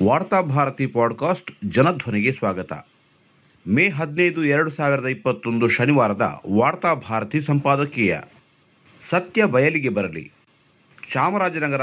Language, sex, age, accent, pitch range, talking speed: Kannada, male, 50-69, native, 110-145 Hz, 80 wpm